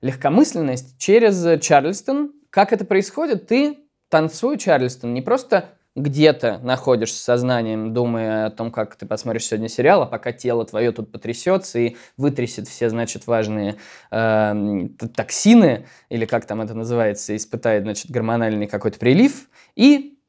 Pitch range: 120-170 Hz